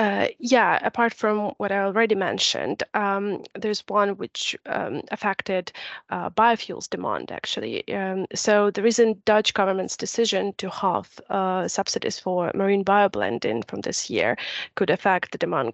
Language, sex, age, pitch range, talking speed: English, female, 30-49, 185-215 Hz, 150 wpm